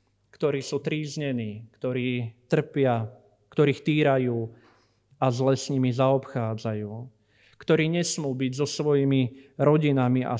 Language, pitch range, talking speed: Slovak, 115-145 Hz, 110 wpm